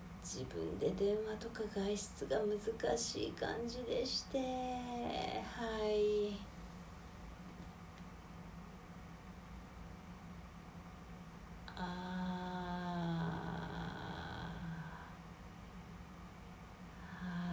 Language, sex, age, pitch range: Japanese, female, 40-59, 150-225 Hz